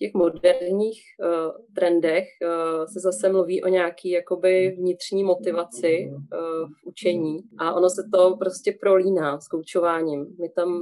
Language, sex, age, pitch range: Czech, female, 30-49, 165-185 Hz